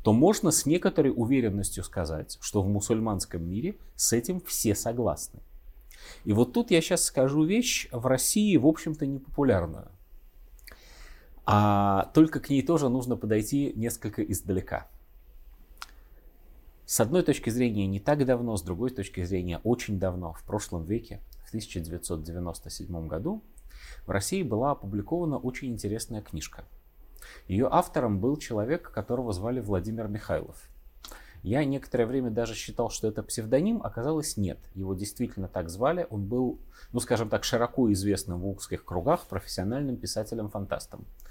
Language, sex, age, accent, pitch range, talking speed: Russian, male, 30-49, native, 90-125 Hz, 140 wpm